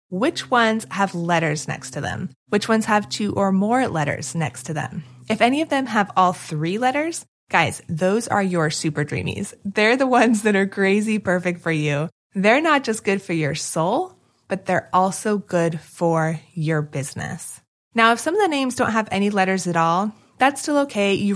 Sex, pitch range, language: female, 170-225 Hz, English